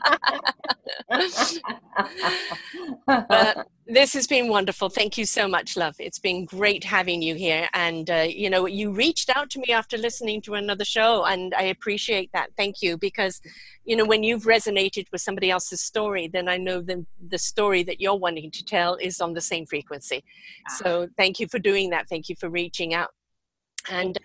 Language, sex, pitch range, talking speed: English, female, 180-225 Hz, 180 wpm